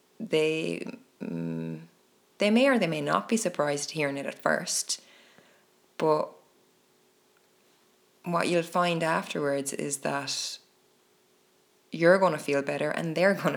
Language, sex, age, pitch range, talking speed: English, female, 20-39, 140-175 Hz, 130 wpm